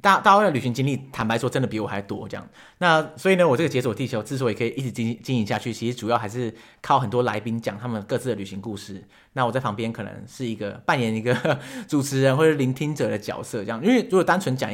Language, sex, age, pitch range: Chinese, male, 30-49, 110-140 Hz